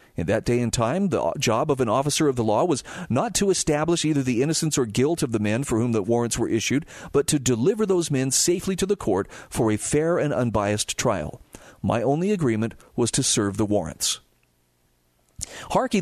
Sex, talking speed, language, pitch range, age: male, 205 wpm, English, 115-165 Hz, 40-59